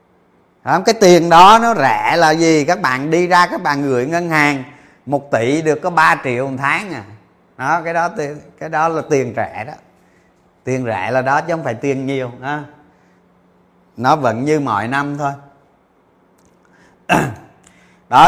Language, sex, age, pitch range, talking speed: Vietnamese, male, 30-49, 140-180 Hz, 170 wpm